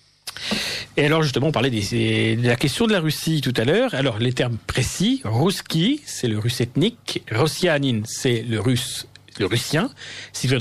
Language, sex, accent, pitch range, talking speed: French, male, French, 110-135 Hz, 200 wpm